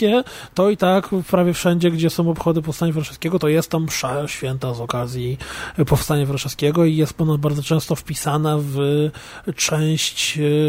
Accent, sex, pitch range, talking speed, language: native, male, 145-170 Hz, 145 wpm, Polish